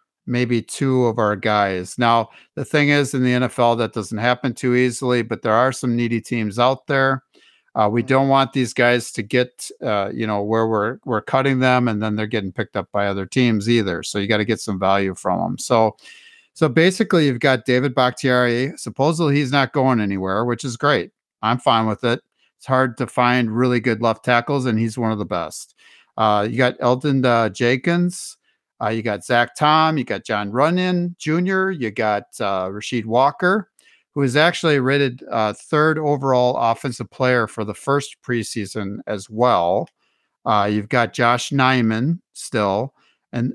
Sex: male